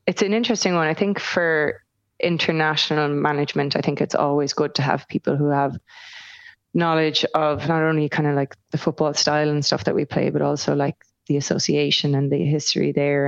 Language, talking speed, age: English, 195 wpm, 20-39